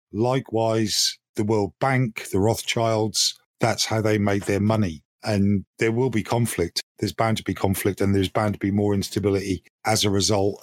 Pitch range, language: 100-125 Hz, English